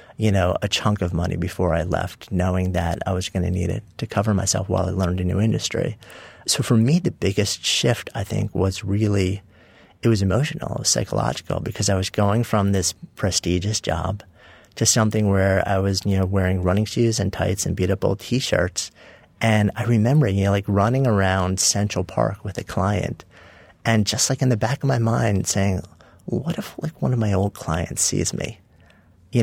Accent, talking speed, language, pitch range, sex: American, 200 wpm, English, 90-110 Hz, male